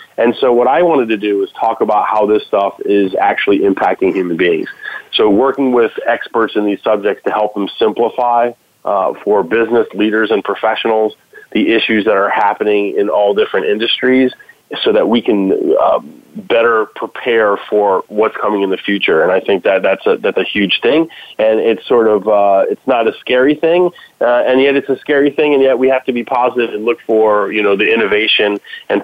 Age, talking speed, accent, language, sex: 30-49, 205 wpm, American, English, male